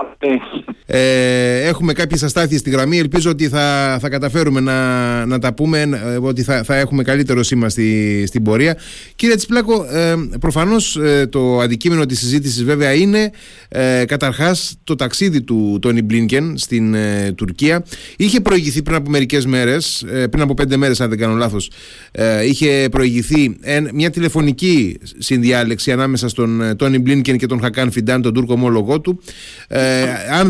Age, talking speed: 30-49, 135 wpm